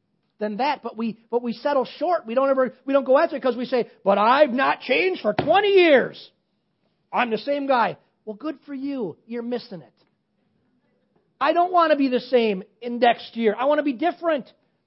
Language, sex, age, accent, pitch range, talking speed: English, male, 40-59, American, 185-290 Hz, 210 wpm